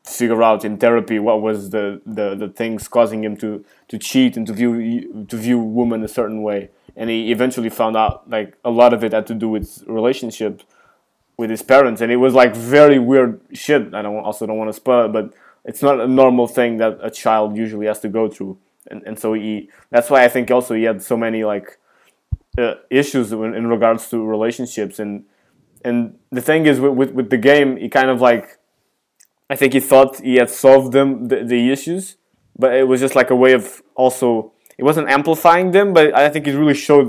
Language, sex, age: English, male, 20-39